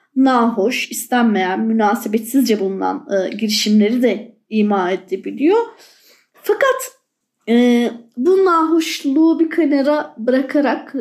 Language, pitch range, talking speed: Turkish, 225-330 Hz, 85 wpm